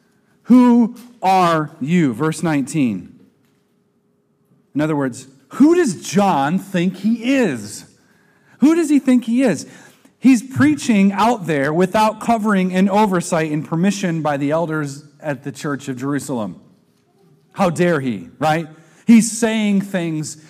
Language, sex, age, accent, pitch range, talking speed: English, male, 40-59, American, 145-210 Hz, 130 wpm